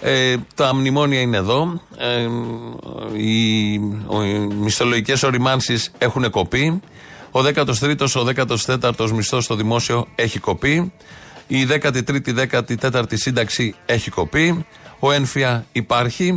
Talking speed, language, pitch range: 130 wpm, Greek, 115-150 Hz